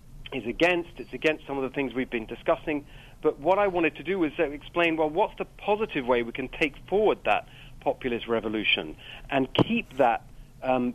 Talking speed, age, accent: 195 wpm, 40-59, British